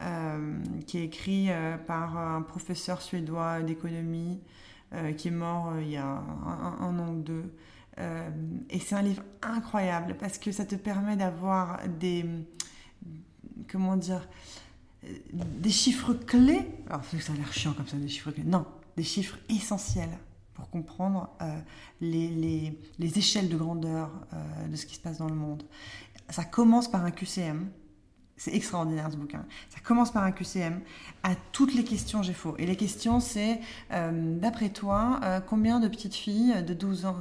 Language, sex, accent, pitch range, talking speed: French, female, French, 150-200 Hz, 175 wpm